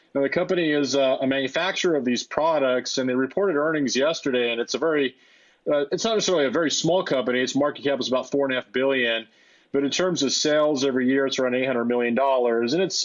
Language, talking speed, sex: English, 235 wpm, male